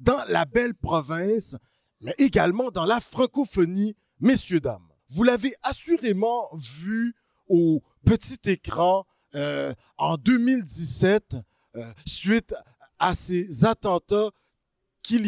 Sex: male